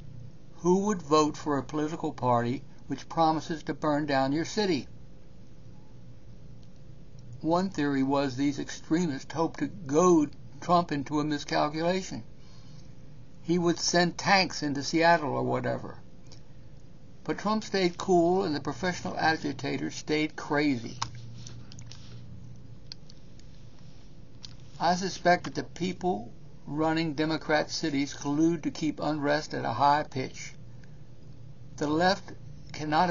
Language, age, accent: English, 60-79, American